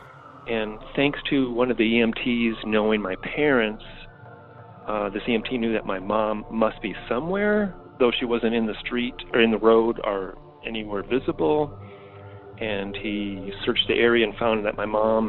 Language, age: English, 40-59